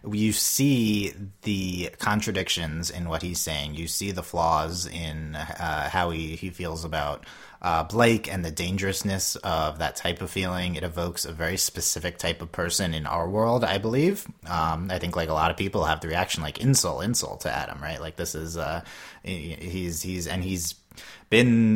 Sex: male